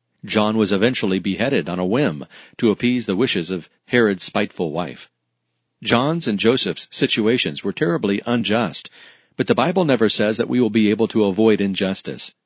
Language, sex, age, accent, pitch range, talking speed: English, male, 40-59, American, 105-130 Hz, 170 wpm